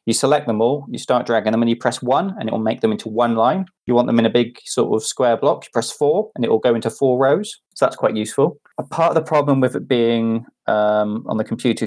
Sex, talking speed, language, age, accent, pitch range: male, 280 wpm, English, 20-39, British, 110-130 Hz